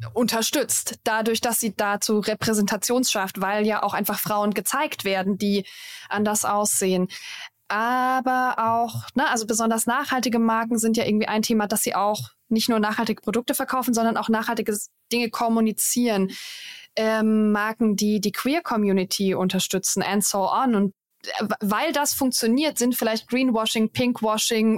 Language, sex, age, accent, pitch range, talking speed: German, female, 20-39, German, 205-245 Hz, 145 wpm